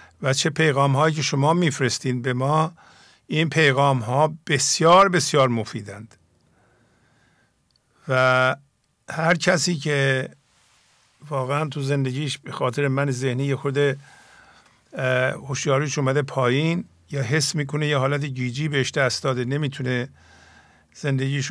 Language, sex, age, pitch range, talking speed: English, male, 50-69, 130-155 Hz, 110 wpm